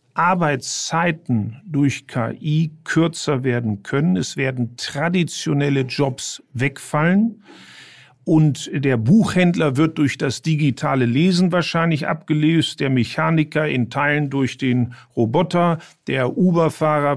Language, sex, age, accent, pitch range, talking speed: German, male, 50-69, German, 125-160 Hz, 105 wpm